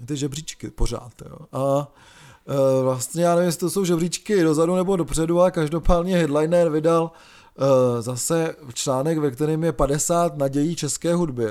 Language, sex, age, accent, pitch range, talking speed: Czech, male, 20-39, native, 140-175 Hz, 155 wpm